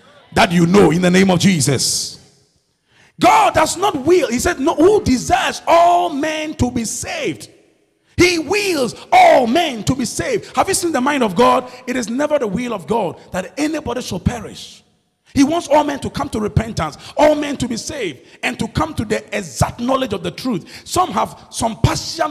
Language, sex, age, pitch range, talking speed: English, male, 40-59, 200-305 Hz, 200 wpm